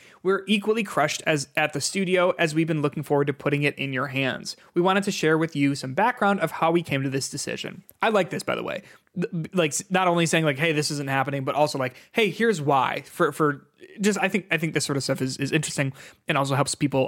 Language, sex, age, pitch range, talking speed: English, male, 20-39, 140-185 Hz, 255 wpm